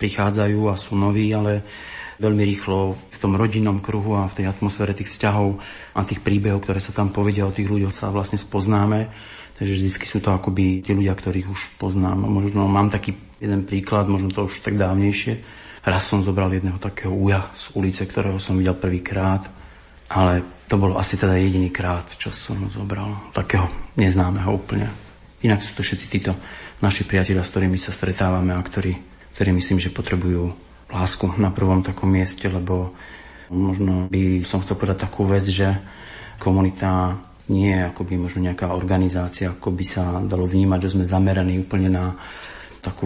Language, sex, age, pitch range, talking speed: Slovak, male, 40-59, 95-100 Hz, 175 wpm